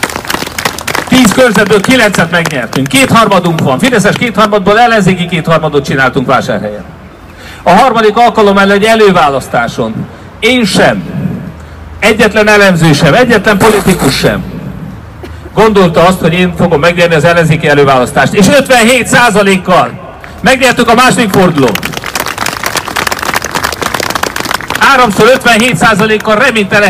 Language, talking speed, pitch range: Hungarian, 100 wpm, 180-240 Hz